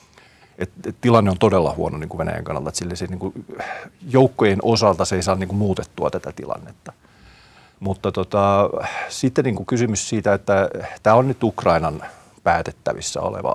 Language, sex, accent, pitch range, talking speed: Finnish, male, native, 85-105 Hz, 160 wpm